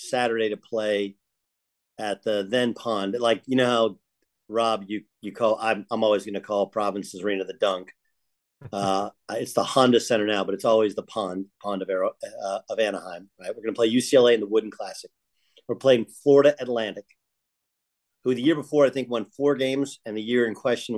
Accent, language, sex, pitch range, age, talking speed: American, English, male, 105-125 Hz, 40-59, 200 wpm